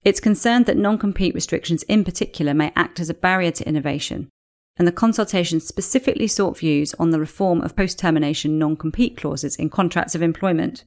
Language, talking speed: English, 170 wpm